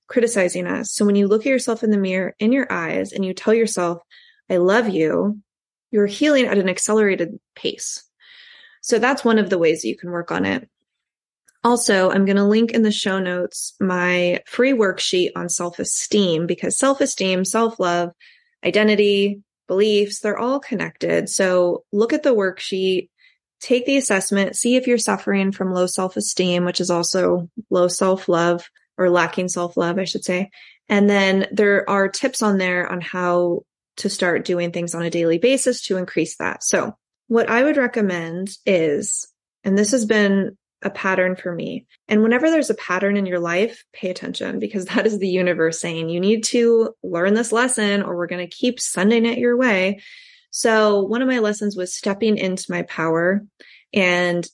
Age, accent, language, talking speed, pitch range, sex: 20-39, American, English, 180 wpm, 180-230 Hz, female